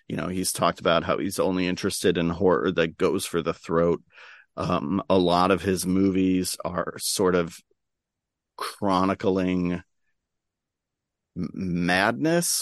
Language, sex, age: English, male, 40-59